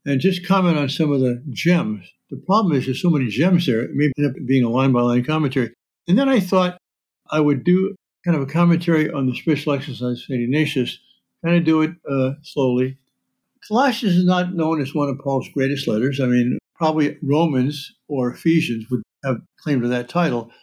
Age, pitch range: 60-79, 130-180 Hz